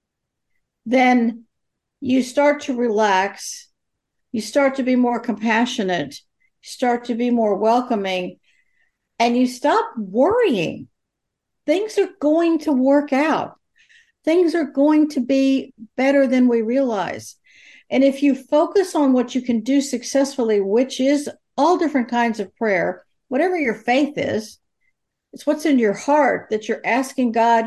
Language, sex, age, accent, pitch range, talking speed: English, female, 60-79, American, 230-280 Hz, 140 wpm